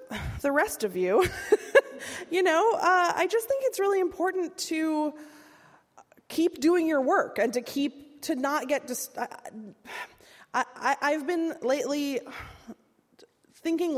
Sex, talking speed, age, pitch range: female, 120 wpm, 20-39, 205-290 Hz